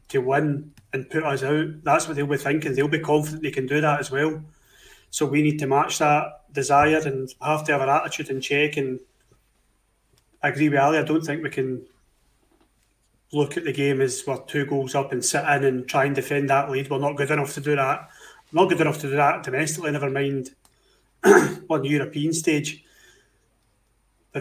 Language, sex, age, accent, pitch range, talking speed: English, male, 30-49, British, 135-150 Hz, 210 wpm